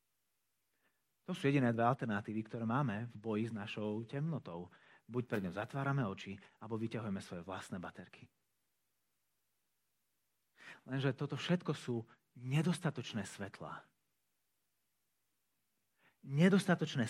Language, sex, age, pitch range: Slovak, male, 30-49, 110-165 Hz